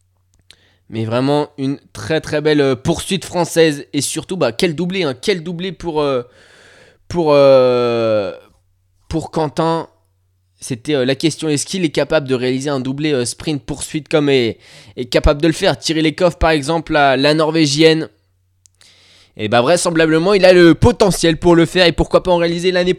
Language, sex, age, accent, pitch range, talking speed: French, male, 20-39, French, 110-160 Hz, 180 wpm